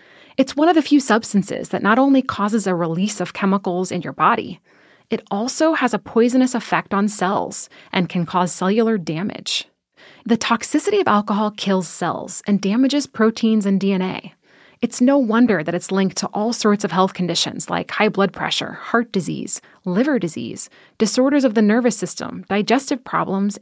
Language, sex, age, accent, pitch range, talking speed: English, female, 20-39, American, 195-250 Hz, 175 wpm